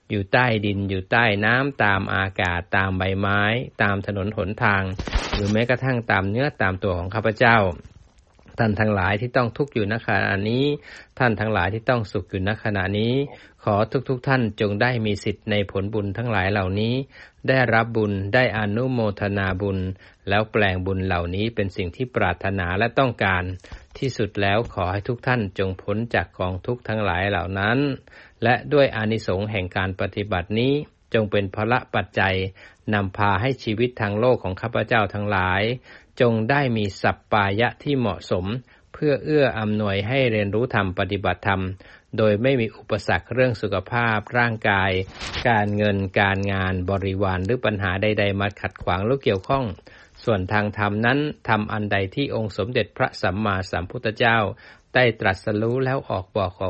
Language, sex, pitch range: Thai, male, 95-120 Hz